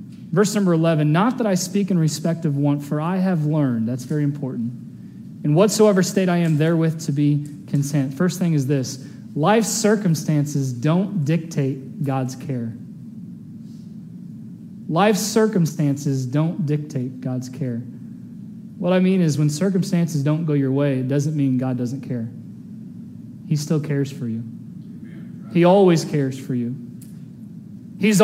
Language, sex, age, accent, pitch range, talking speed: English, male, 30-49, American, 140-190 Hz, 150 wpm